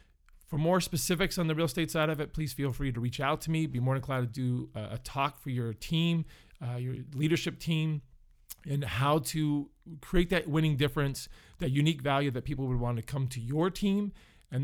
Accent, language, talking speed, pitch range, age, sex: American, English, 215 wpm, 130-155 Hz, 40-59, male